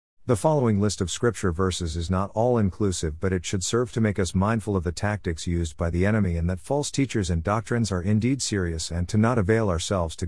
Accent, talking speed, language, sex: American, 235 wpm, English, male